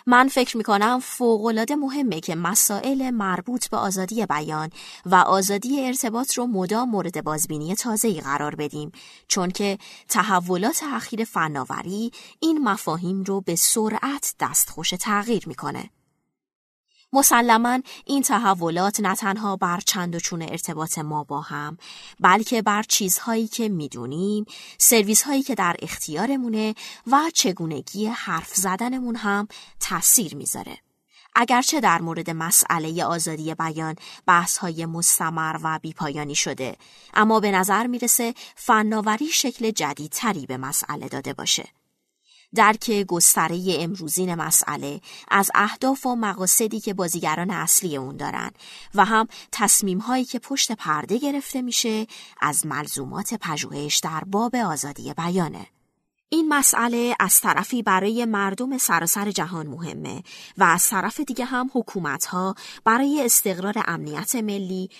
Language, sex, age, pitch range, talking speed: Persian, female, 20-39, 170-235 Hz, 125 wpm